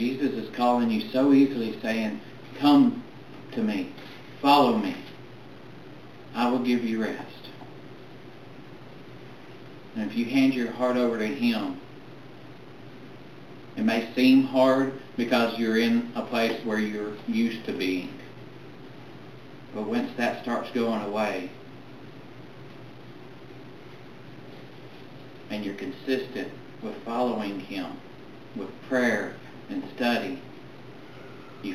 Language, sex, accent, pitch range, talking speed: English, male, American, 110-130 Hz, 110 wpm